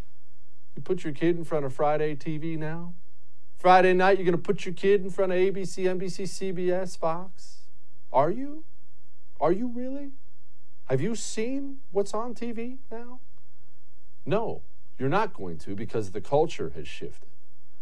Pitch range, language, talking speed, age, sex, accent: 120-195 Hz, English, 155 wpm, 40-59, male, American